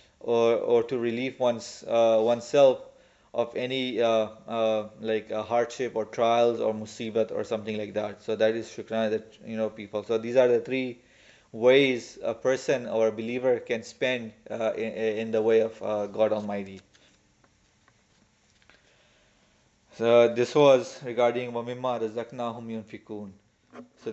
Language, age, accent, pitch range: English, 30-49, Indian, 110-125 Hz